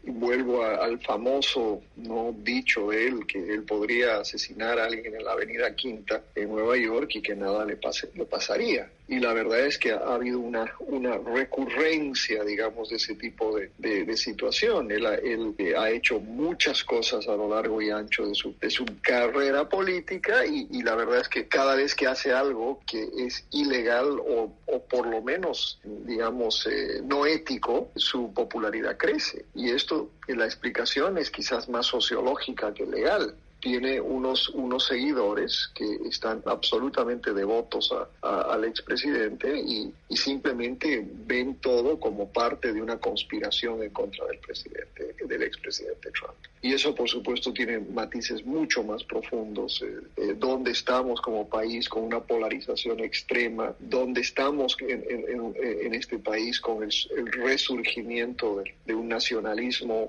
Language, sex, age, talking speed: Spanish, male, 40-59, 165 wpm